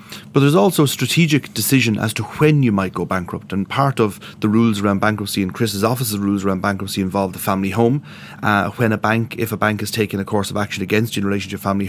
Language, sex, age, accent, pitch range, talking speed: English, male, 30-49, Irish, 100-115 Hz, 250 wpm